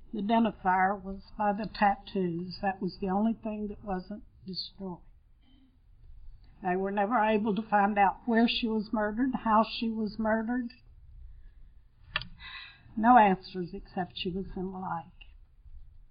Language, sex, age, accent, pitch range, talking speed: English, female, 60-79, American, 185-240 Hz, 135 wpm